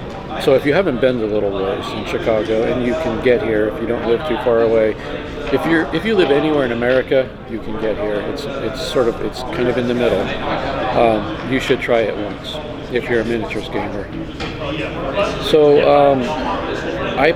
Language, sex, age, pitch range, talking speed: English, male, 40-59, 110-130 Hz, 200 wpm